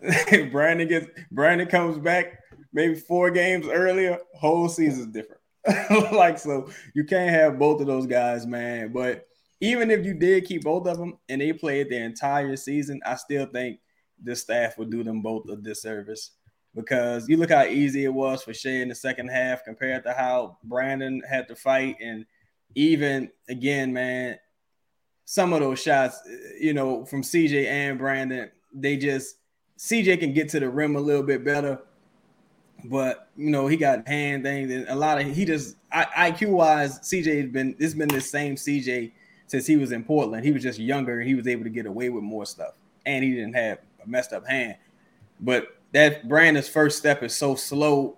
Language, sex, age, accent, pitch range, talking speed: English, male, 20-39, American, 125-155 Hz, 195 wpm